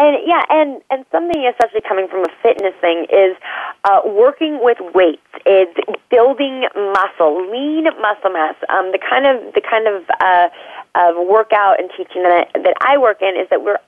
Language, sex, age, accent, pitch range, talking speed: English, female, 30-49, American, 175-245 Hz, 185 wpm